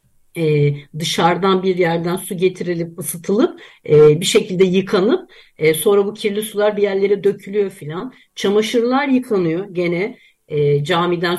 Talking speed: 130 wpm